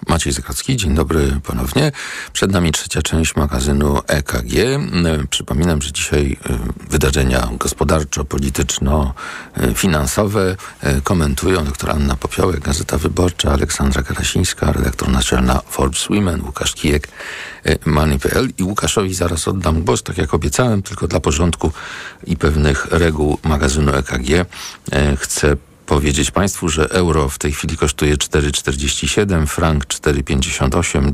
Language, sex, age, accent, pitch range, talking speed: Polish, male, 50-69, native, 70-95 Hz, 115 wpm